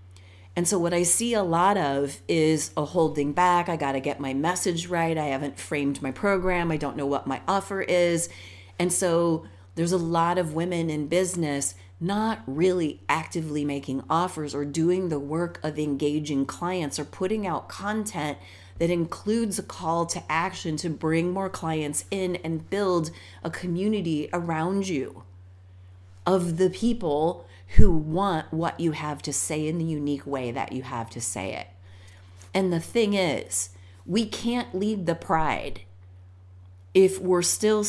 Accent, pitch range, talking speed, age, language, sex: American, 135-180 Hz, 165 wpm, 40-59, English, female